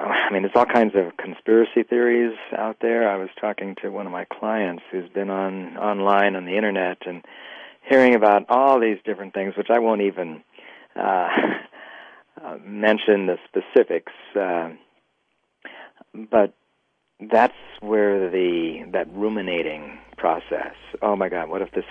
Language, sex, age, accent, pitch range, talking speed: English, male, 50-69, American, 90-110 Hz, 150 wpm